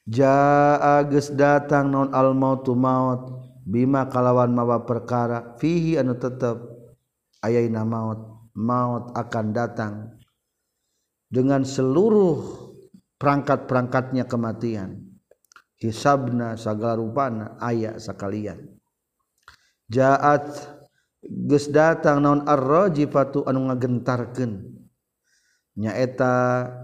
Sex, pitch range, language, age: male, 115-135 Hz, Indonesian, 50-69